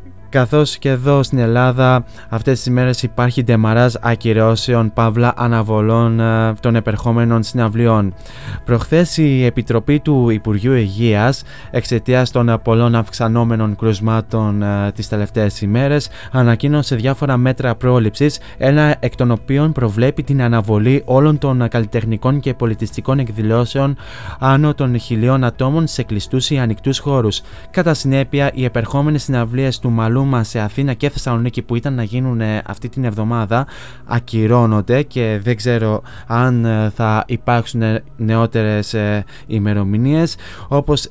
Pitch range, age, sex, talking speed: 110-130 Hz, 20-39, male, 125 wpm